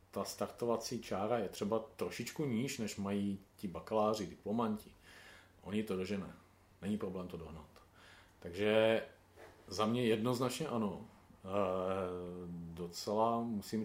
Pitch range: 90-105 Hz